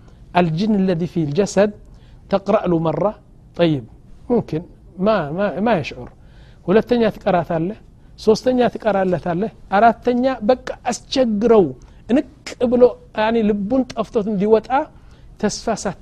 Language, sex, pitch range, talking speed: Amharic, male, 165-220 Hz, 110 wpm